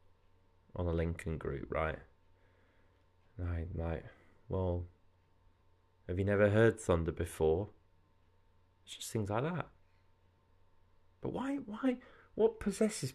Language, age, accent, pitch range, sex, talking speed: English, 30-49, British, 90-115 Hz, male, 115 wpm